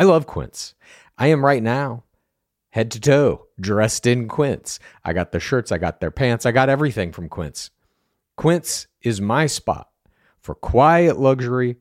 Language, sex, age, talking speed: English, male, 40-59, 170 wpm